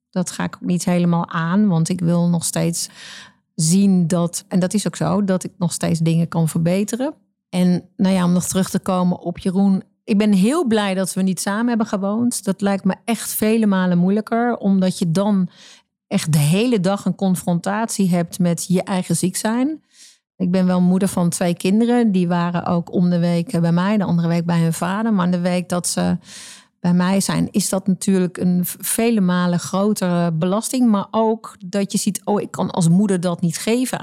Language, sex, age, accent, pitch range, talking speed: Dutch, female, 40-59, Dutch, 175-205 Hz, 205 wpm